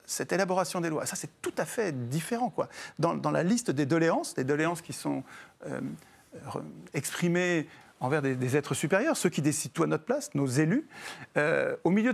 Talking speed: 200 wpm